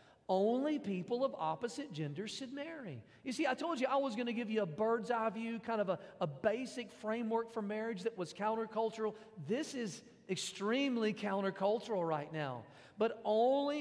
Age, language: 40-59, English